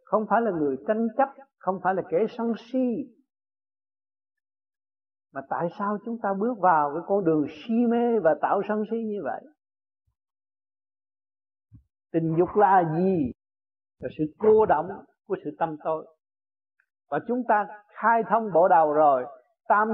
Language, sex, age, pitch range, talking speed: Vietnamese, male, 60-79, 140-215 Hz, 155 wpm